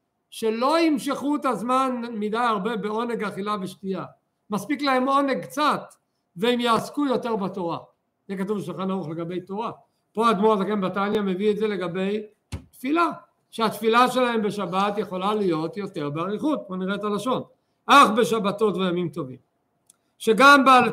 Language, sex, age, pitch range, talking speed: Hebrew, male, 50-69, 195-255 Hz, 140 wpm